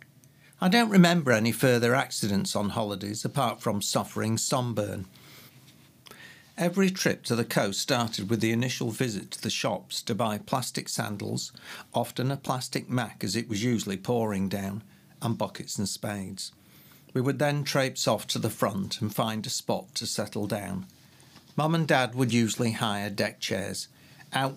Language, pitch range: English, 105-130 Hz